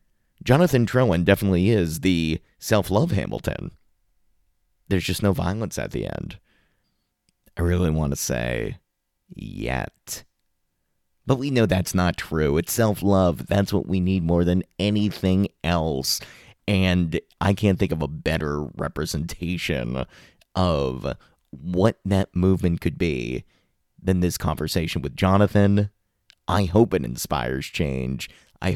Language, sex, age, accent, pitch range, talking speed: English, male, 30-49, American, 80-100 Hz, 130 wpm